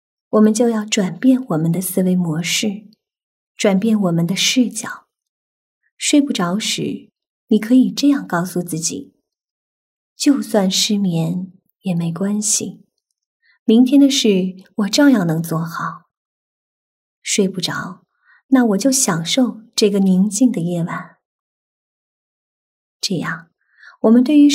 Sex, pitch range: female, 185-240 Hz